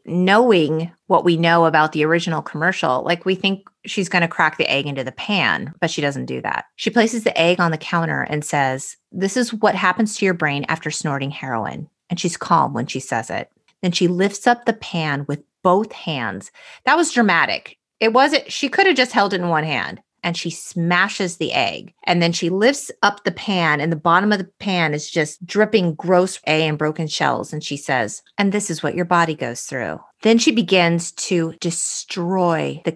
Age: 30-49